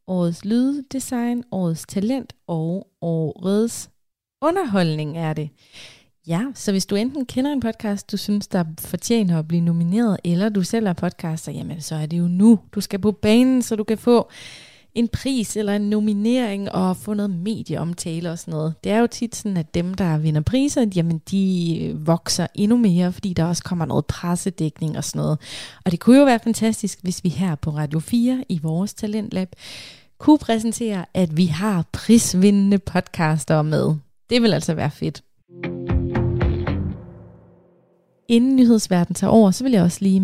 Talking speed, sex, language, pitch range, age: 175 wpm, female, Danish, 170-215 Hz, 20-39